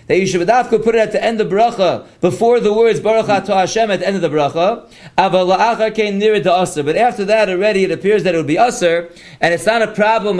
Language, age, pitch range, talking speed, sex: English, 40-59, 185-225 Hz, 250 wpm, male